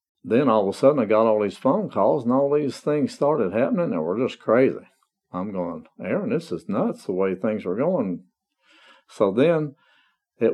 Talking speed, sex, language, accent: 200 wpm, male, English, American